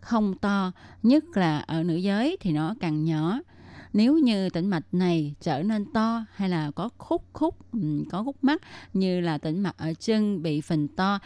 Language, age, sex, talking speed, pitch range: Vietnamese, 20-39, female, 190 wpm, 165-220 Hz